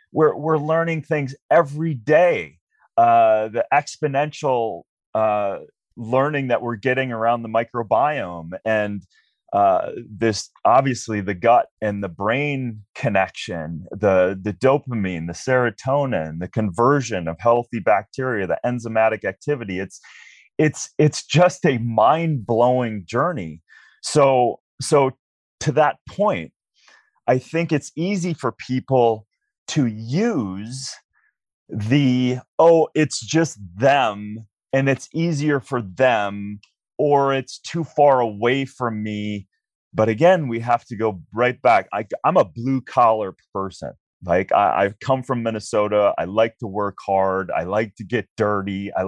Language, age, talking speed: English, 30-49, 130 wpm